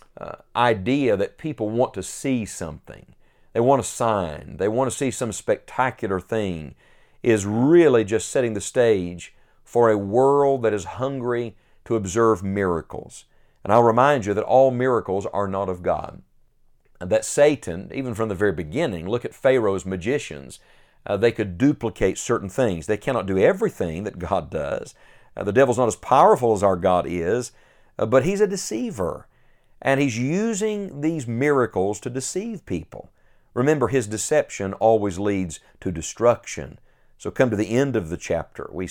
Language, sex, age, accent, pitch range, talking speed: English, male, 50-69, American, 100-130 Hz, 170 wpm